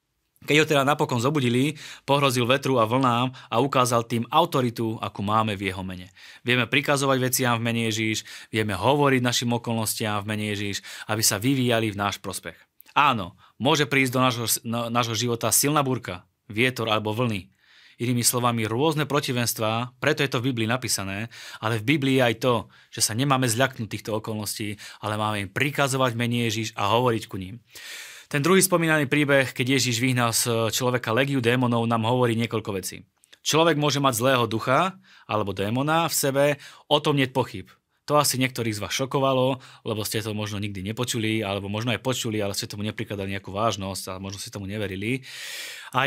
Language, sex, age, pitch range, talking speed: Slovak, male, 20-39, 110-135 Hz, 180 wpm